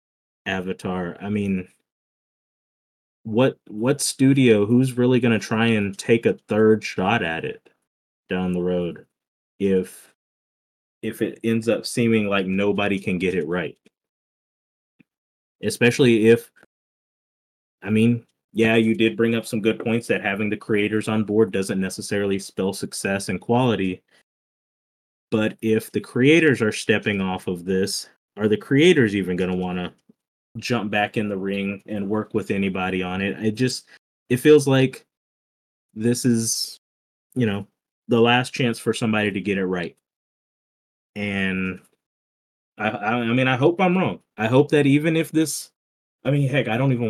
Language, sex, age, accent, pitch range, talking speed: English, male, 20-39, American, 100-120 Hz, 155 wpm